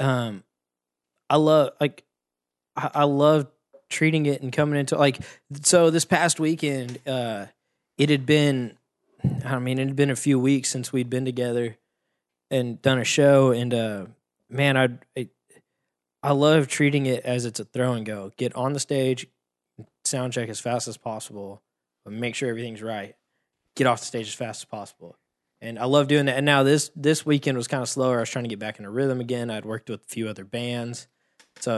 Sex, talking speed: male, 200 wpm